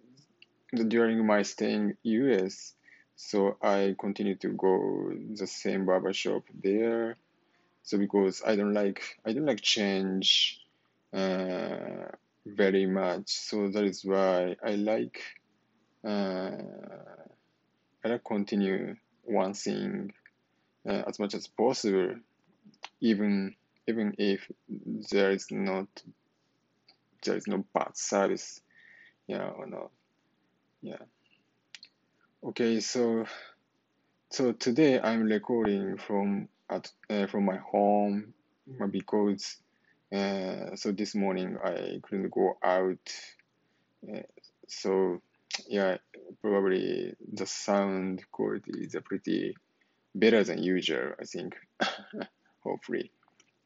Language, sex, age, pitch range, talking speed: English, male, 20-39, 95-110 Hz, 110 wpm